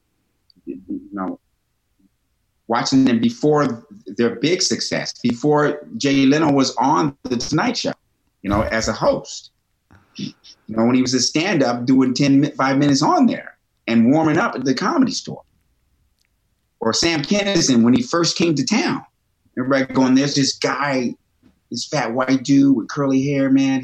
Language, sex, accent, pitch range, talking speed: English, male, American, 110-155 Hz, 160 wpm